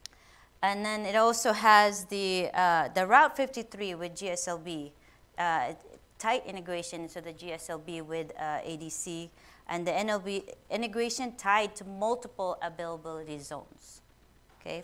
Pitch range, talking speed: 175-225 Hz, 125 wpm